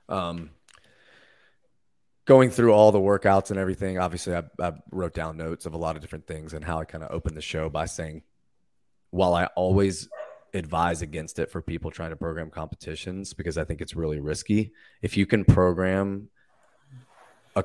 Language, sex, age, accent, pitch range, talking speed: English, male, 30-49, American, 85-100 Hz, 175 wpm